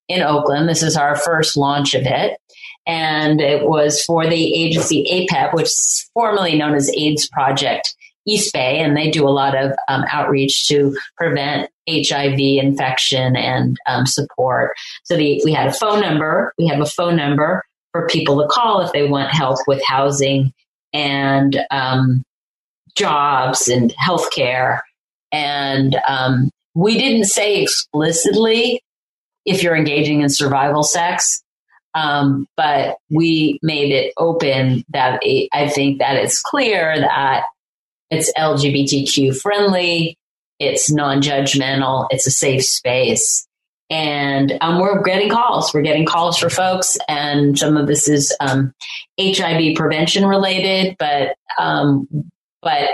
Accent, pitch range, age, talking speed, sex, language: American, 140-170 Hz, 40-59, 140 wpm, female, English